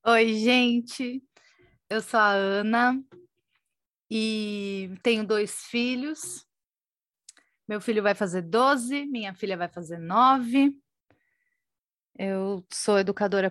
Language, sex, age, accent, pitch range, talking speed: Portuguese, female, 30-49, Brazilian, 190-240 Hz, 100 wpm